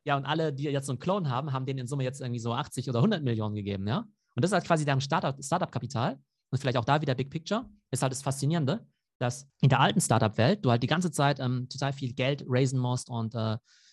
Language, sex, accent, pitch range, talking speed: German, male, German, 115-140 Hz, 260 wpm